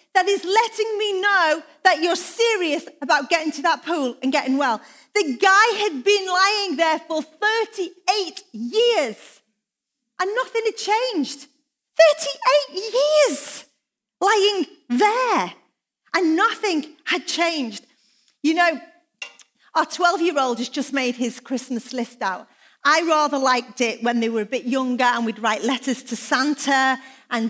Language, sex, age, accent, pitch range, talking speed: English, female, 40-59, British, 255-370 Hz, 140 wpm